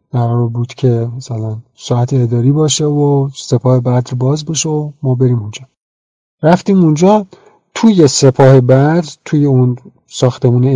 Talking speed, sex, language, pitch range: 140 wpm, male, Persian, 125-160 Hz